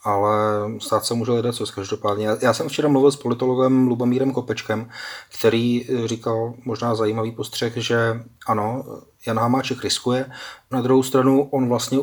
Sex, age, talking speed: male, 30-49, 150 wpm